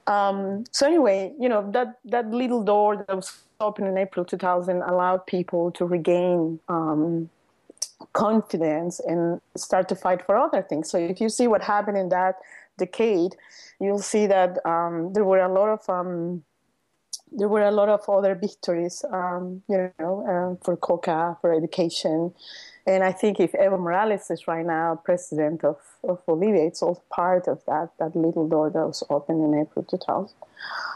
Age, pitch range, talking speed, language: 30-49, 175-210 Hz, 175 wpm, English